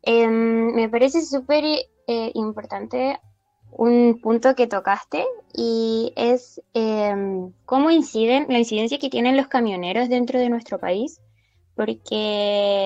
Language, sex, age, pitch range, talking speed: Spanish, female, 10-29, 210-260 Hz, 120 wpm